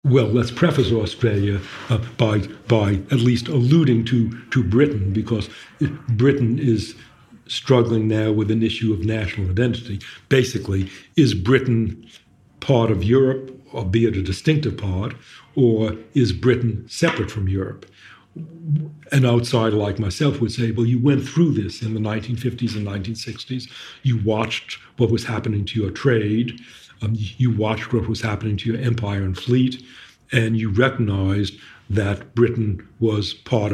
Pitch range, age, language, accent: 105-125 Hz, 60-79, English, American